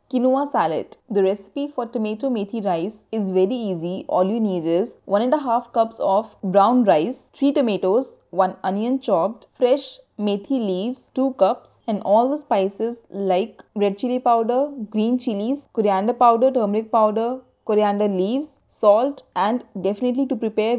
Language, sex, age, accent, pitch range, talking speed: English, female, 20-39, Indian, 200-250 Hz, 145 wpm